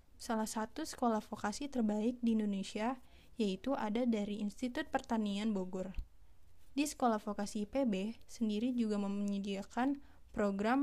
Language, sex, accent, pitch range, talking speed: Indonesian, female, native, 205-255 Hz, 115 wpm